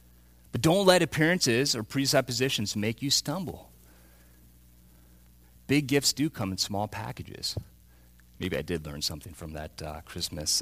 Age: 40-59